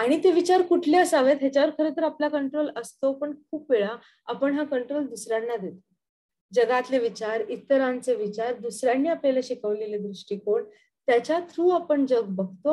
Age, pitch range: 20-39, 220-290 Hz